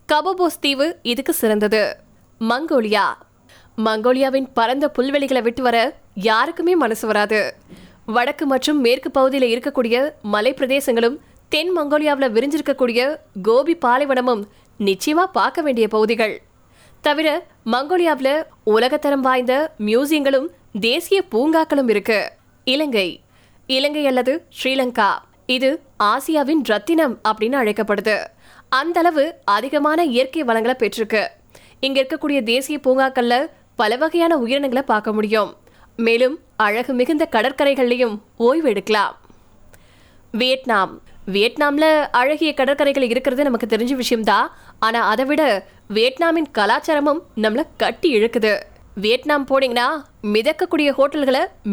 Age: 20-39